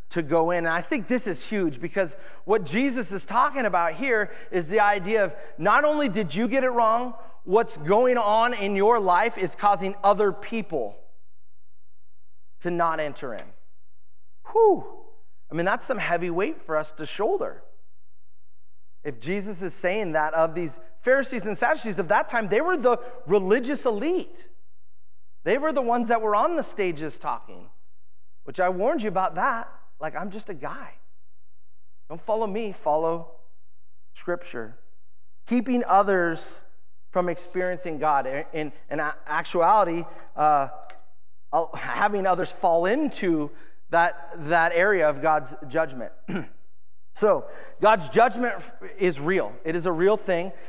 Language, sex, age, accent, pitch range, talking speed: English, male, 30-49, American, 145-215 Hz, 150 wpm